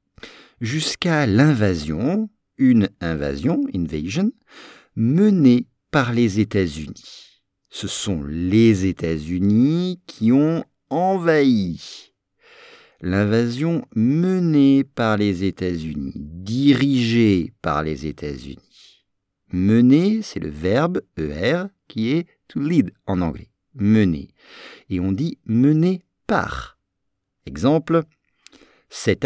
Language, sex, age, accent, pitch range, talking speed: English, male, 50-69, French, 95-155 Hz, 90 wpm